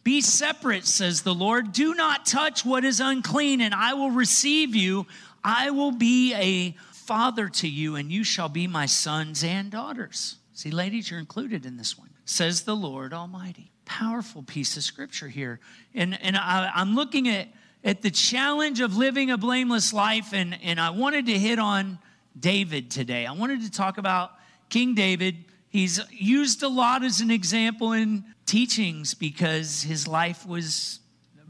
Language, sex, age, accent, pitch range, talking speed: English, male, 40-59, American, 175-245 Hz, 170 wpm